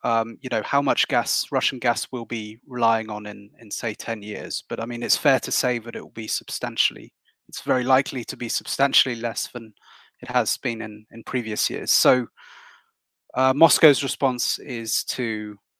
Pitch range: 115-135 Hz